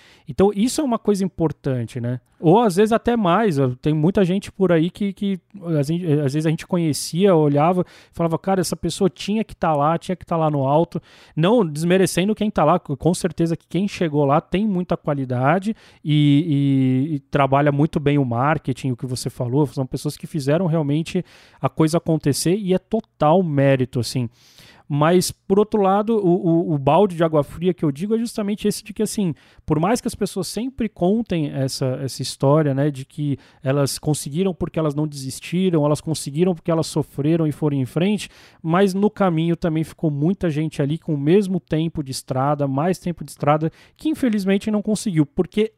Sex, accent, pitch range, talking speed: male, Brazilian, 145-190 Hz, 195 wpm